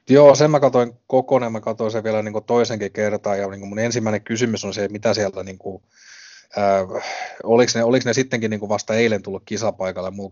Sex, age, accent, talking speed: male, 30-49, native, 205 wpm